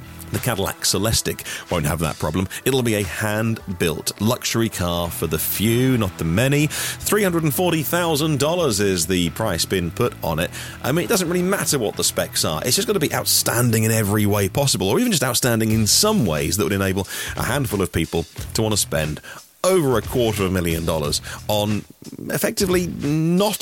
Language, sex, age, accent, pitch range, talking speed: English, male, 30-49, British, 95-135 Hz, 190 wpm